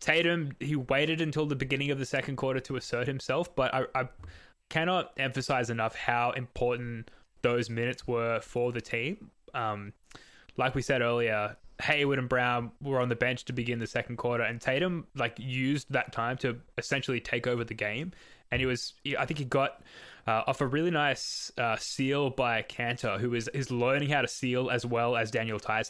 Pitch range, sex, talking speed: 115-135 Hz, male, 195 wpm